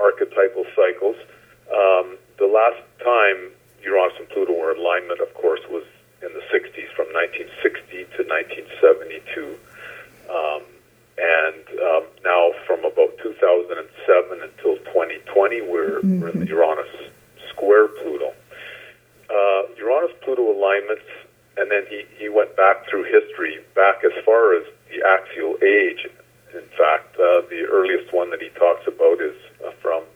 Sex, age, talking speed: male, 50-69, 135 wpm